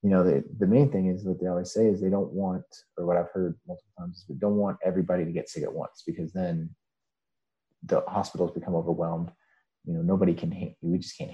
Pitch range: 85-100 Hz